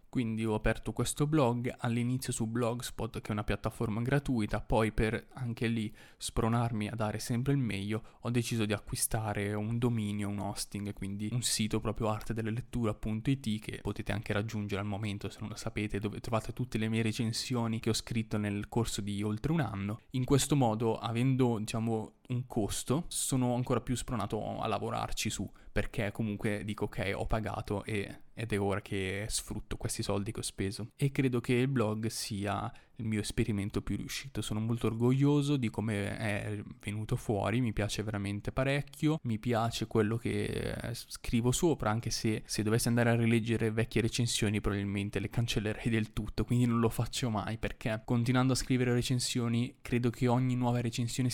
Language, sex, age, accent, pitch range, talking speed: Italian, male, 20-39, native, 105-120 Hz, 175 wpm